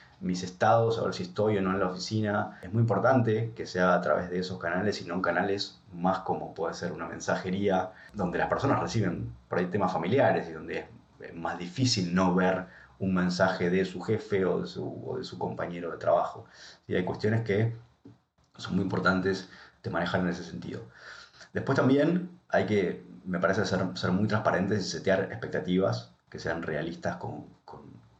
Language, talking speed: Spanish, 190 wpm